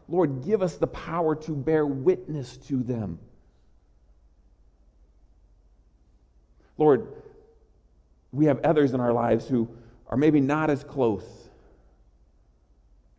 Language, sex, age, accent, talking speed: English, male, 50-69, American, 105 wpm